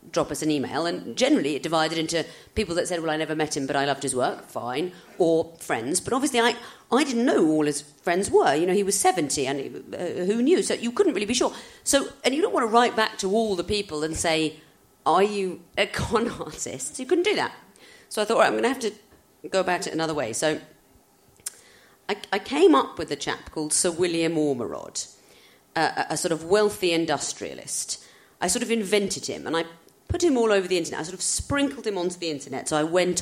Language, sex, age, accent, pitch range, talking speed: English, female, 40-59, British, 150-205 Hz, 240 wpm